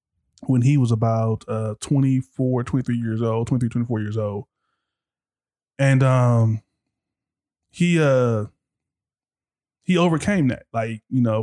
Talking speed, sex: 120 wpm, male